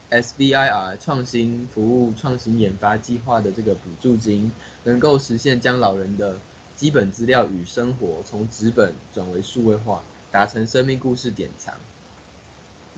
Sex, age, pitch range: male, 20-39, 105-135 Hz